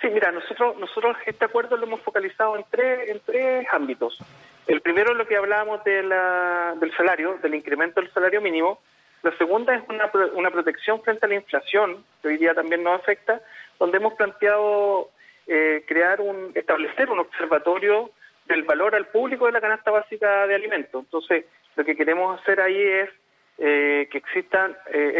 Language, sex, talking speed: Spanish, male, 175 wpm